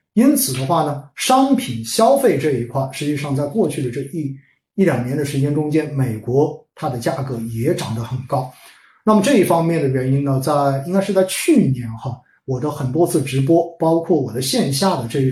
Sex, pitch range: male, 135-185 Hz